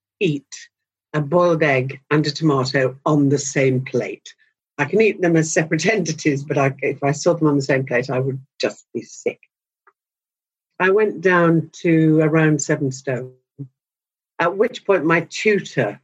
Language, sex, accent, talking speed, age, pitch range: English, female, British, 165 wpm, 60-79, 135-180 Hz